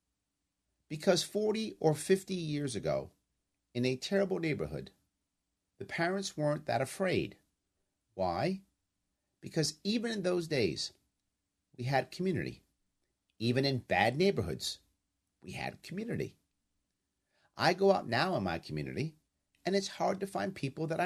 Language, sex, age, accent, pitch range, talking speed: English, male, 50-69, American, 135-205 Hz, 130 wpm